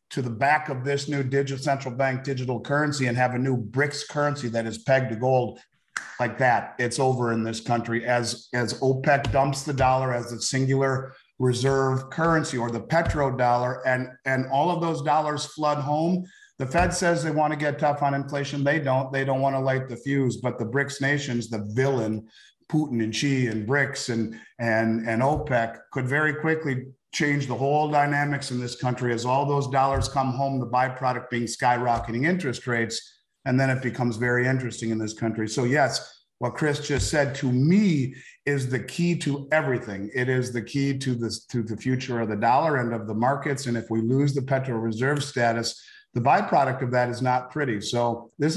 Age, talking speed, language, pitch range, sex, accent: 50-69, 200 wpm, English, 120-140 Hz, male, American